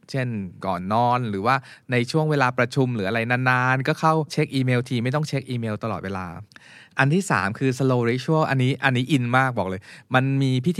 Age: 20-39